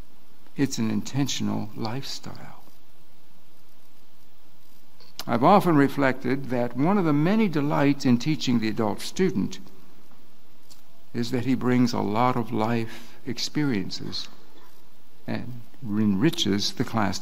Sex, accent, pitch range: male, American, 110-135 Hz